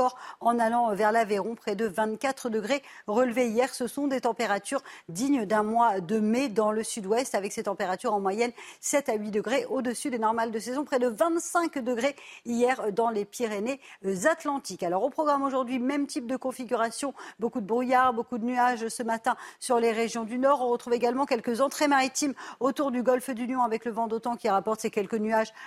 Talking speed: 200 wpm